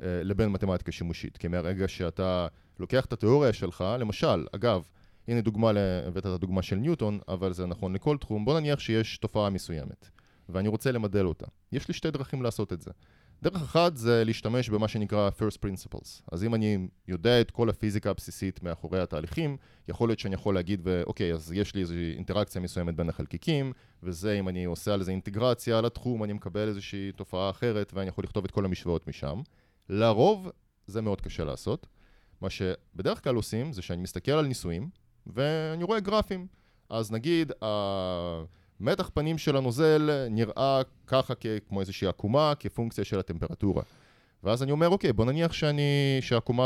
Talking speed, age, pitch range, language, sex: 155 wpm, 20-39, 95-125 Hz, Hebrew, male